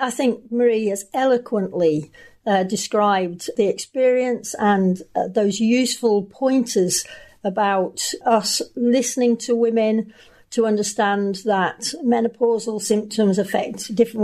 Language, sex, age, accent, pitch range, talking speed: English, female, 50-69, British, 200-245 Hz, 110 wpm